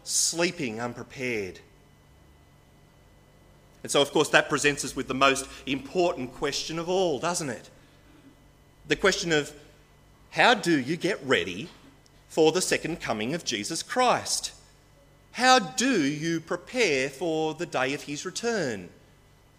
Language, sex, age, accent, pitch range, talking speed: English, male, 30-49, Australian, 125-165 Hz, 130 wpm